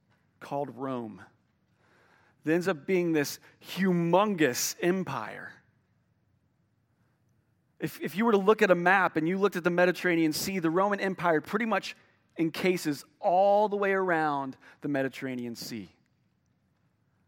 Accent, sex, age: American, male, 40-59